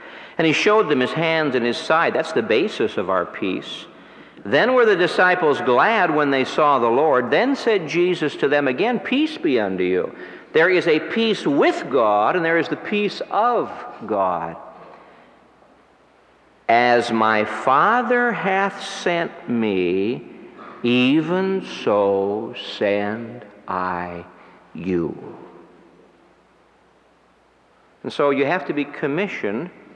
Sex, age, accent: male, 60-79, American